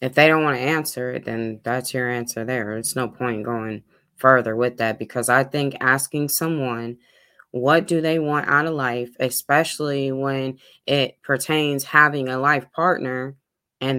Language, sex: English, female